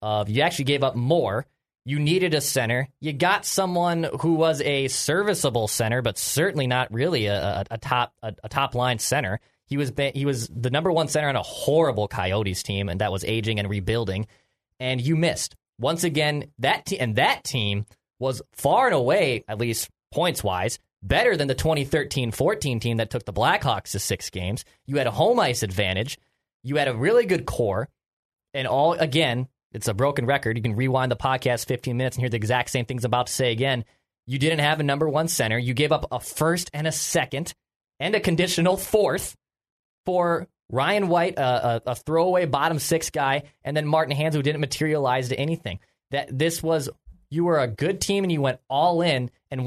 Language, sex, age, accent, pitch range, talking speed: English, male, 20-39, American, 120-160 Hz, 205 wpm